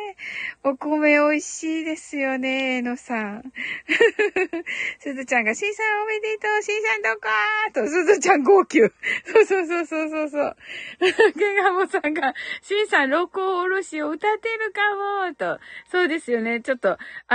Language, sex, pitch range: Japanese, female, 280-410 Hz